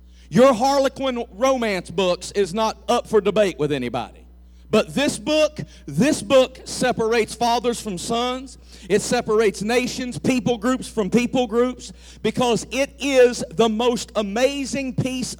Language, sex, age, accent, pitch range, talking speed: English, male, 50-69, American, 180-270 Hz, 135 wpm